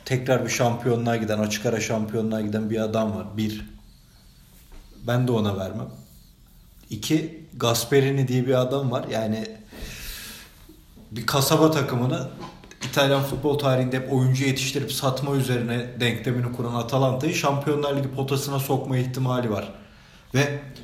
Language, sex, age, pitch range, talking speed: Turkish, male, 40-59, 115-140 Hz, 125 wpm